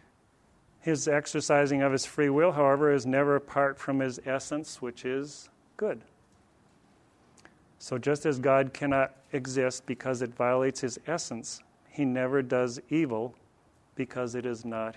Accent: American